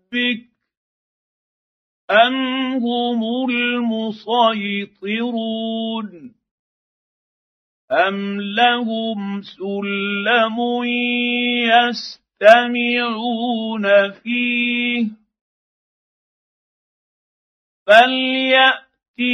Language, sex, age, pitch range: Arabic, male, 50-69, 220-240 Hz